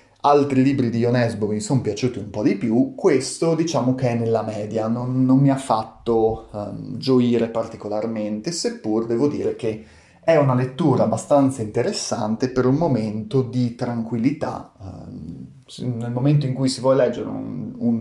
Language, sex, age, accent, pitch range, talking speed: Italian, male, 30-49, native, 110-135 Hz, 155 wpm